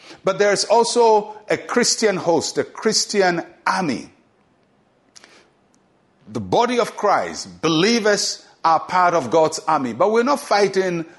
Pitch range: 150-200 Hz